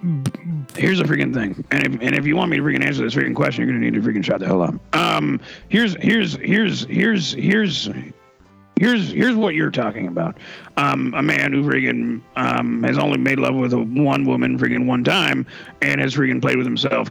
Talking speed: 215 wpm